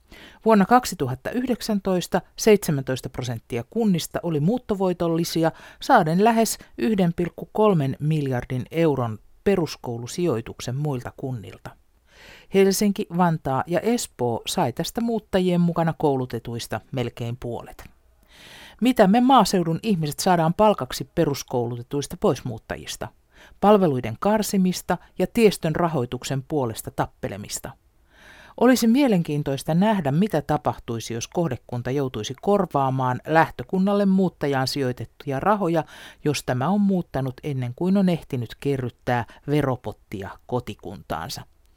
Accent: native